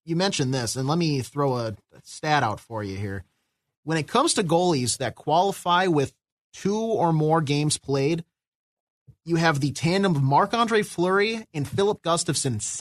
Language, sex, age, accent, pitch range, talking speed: English, male, 30-49, American, 130-165 Hz, 170 wpm